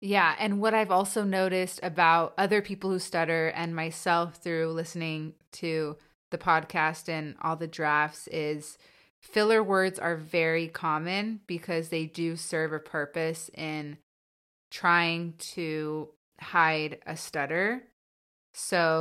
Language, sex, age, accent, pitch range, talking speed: English, female, 20-39, American, 155-180 Hz, 130 wpm